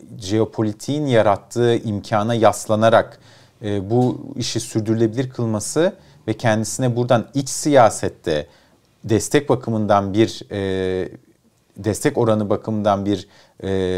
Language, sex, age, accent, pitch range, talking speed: Turkish, male, 40-59, native, 90-115 Hz, 100 wpm